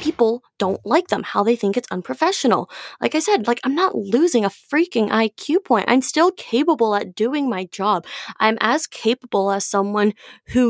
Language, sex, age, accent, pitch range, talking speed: English, female, 20-39, American, 200-275 Hz, 185 wpm